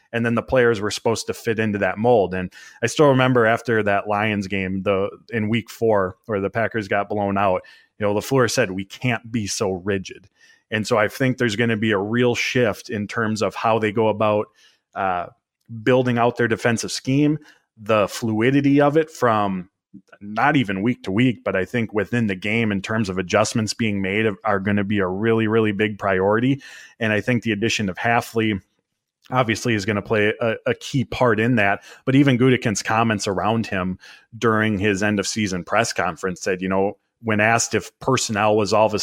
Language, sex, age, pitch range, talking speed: English, male, 30-49, 105-120 Hz, 210 wpm